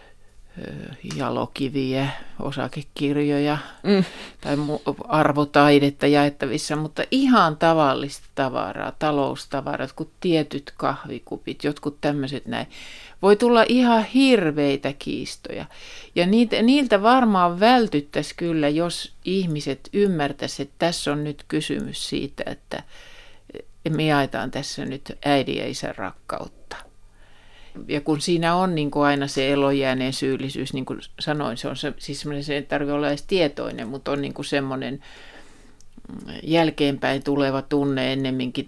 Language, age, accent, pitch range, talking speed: Finnish, 50-69, native, 135-170 Hz, 120 wpm